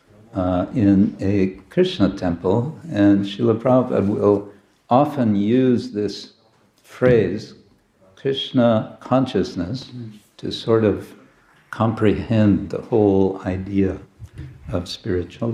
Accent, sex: American, male